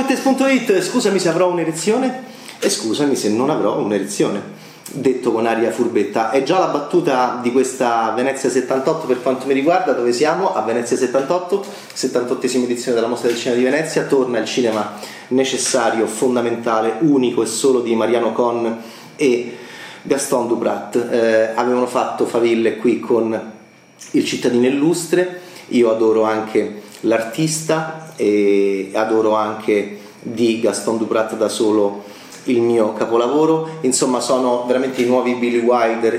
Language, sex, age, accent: Italian, male, 30-49, native